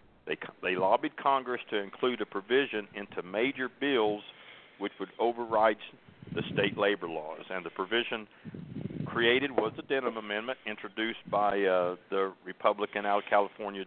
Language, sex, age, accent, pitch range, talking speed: English, male, 50-69, American, 105-125 Hz, 145 wpm